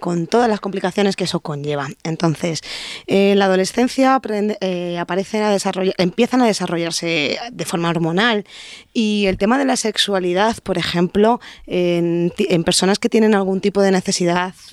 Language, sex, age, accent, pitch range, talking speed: English, female, 20-39, Spanish, 180-225 Hz, 145 wpm